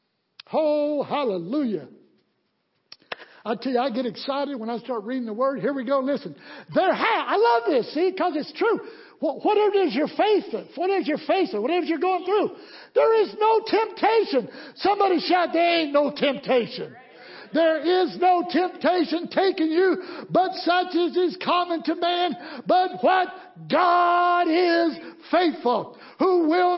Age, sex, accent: 60-79, male, American